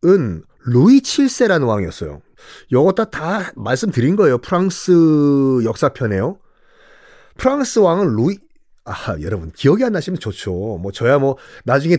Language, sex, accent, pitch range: Korean, male, native, 125-195 Hz